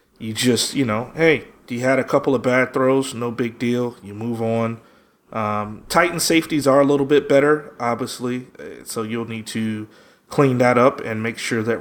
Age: 30-49